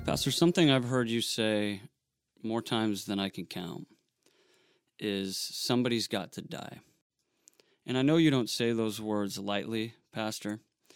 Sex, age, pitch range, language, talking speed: male, 30-49, 105-125 Hz, English, 150 wpm